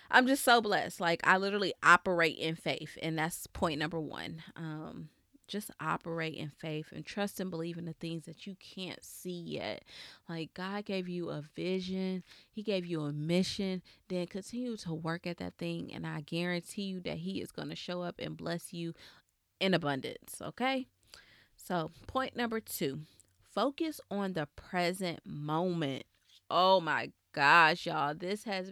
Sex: female